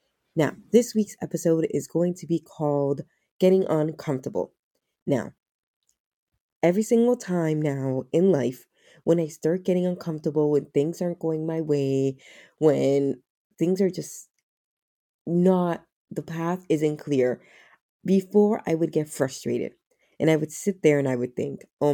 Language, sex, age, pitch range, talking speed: English, female, 20-39, 145-185 Hz, 145 wpm